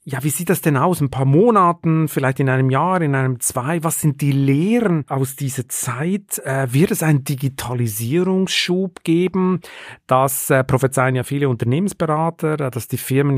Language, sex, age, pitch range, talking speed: German, male, 40-59, 125-160 Hz, 175 wpm